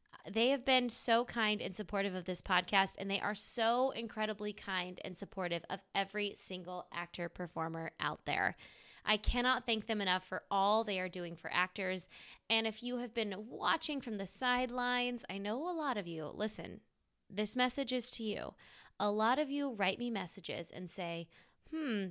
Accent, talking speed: American, 180 wpm